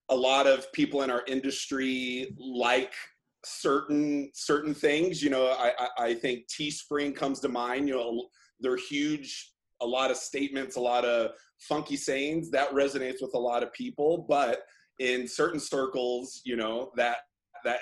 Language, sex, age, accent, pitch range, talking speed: English, male, 30-49, American, 125-155 Hz, 165 wpm